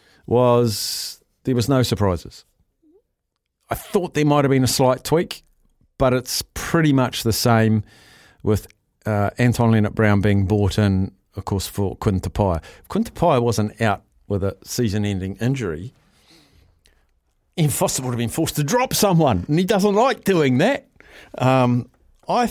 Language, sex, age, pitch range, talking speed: English, male, 50-69, 105-155 Hz, 150 wpm